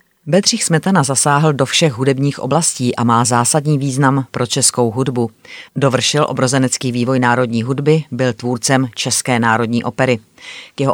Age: 30-49